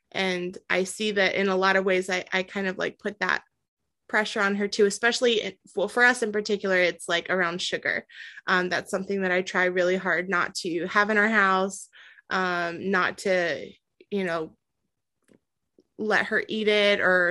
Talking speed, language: 190 wpm, English